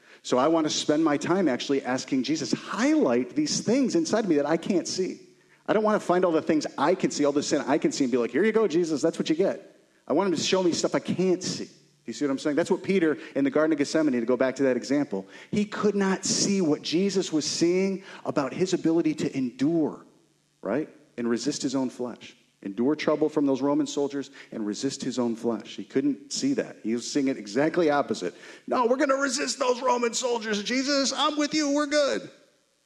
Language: English